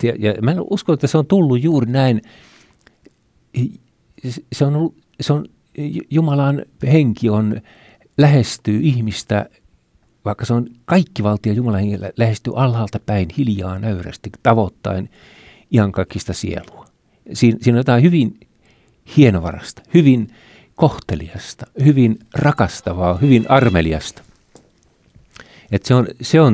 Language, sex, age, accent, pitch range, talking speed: Finnish, male, 50-69, native, 95-130 Hz, 120 wpm